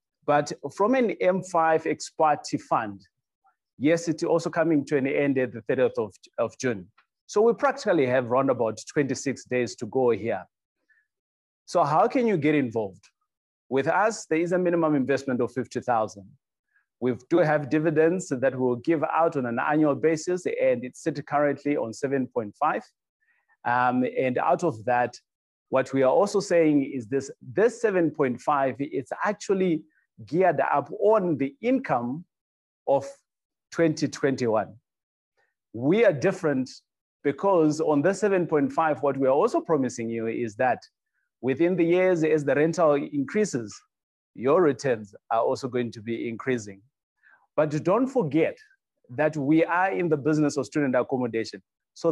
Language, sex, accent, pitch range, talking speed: English, male, South African, 130-175 Hz, 150 wpm